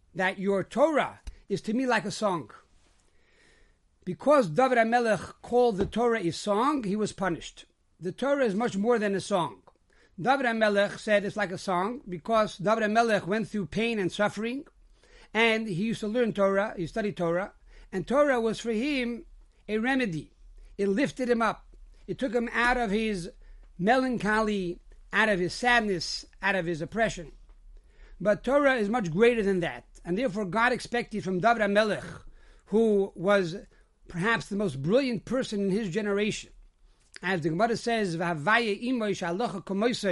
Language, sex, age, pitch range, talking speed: English, male, 60-79, 185-235 Hz, 160 wpm